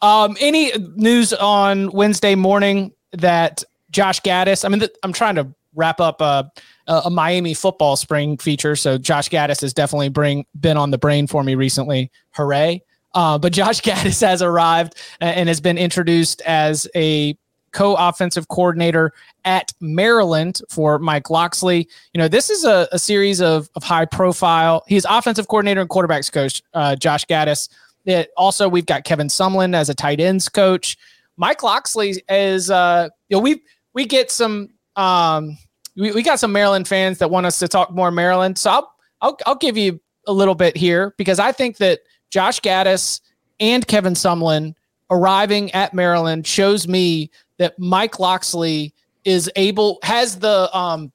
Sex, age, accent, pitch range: male, 20-39, American, 160-200 Hz